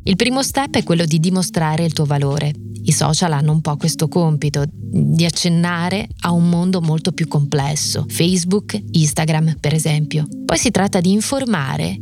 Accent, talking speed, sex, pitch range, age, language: native, 170 wpm, female, 150-180 Hz, 20-39, Italian